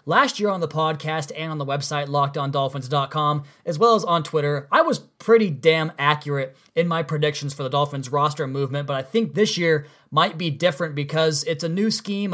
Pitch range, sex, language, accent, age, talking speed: 145-175 Hz, male, English, American, 20-39, 200 wpm